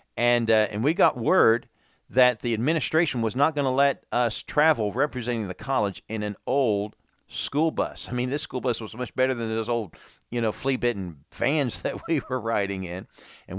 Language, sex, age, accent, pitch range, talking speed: English, male, 50-69, American, 95-130 Hz, 205 wpm